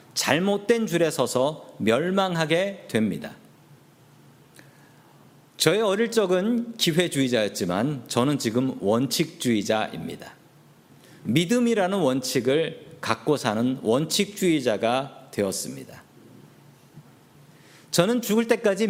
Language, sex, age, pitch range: Korean, male, 40-59, 145-215 Hz